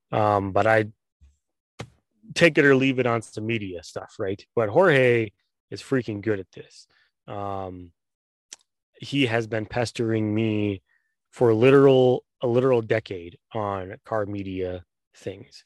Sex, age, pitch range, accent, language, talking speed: male, 20-39, 100-120 Hz, American, English, 135 wpm